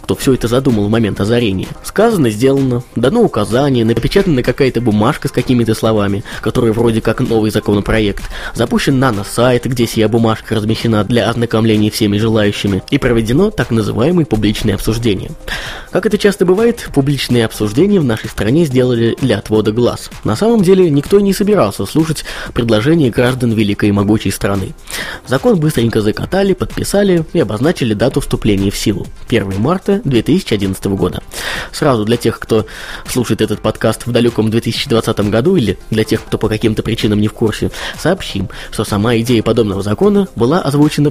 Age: 20-39